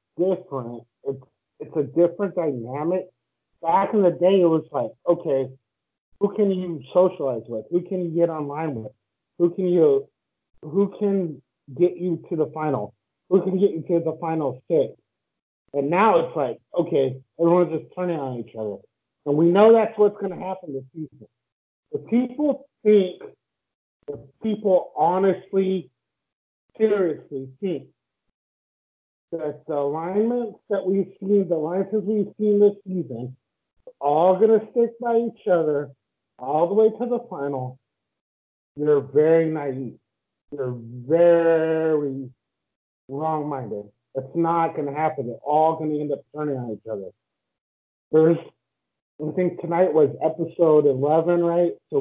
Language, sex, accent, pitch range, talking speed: English, male, American, 140-185 Hz, 145 wpm